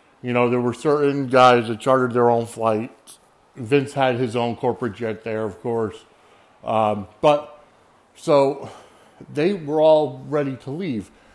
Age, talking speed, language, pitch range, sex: 50-69, 155 wpm, English, 120-150 Hz, male